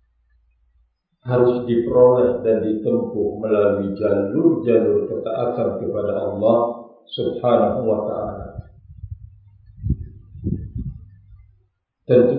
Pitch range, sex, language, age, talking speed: 105-125 Hz, male, Indonesian, 50-69, 60 wpm